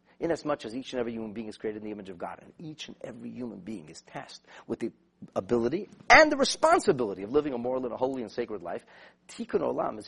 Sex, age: male, 40-59